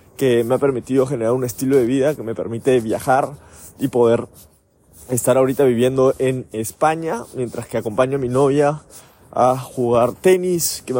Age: 20-39